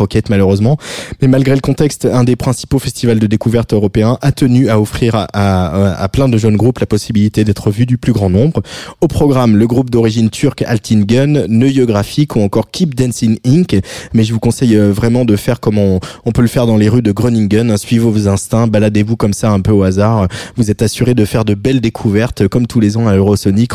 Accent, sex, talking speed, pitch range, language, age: French, male, 220 wpm, 105-125 Hz, French, 20-39